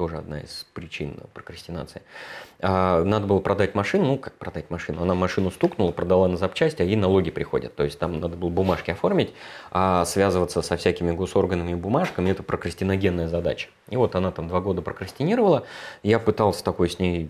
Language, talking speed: Russian, 185 wpm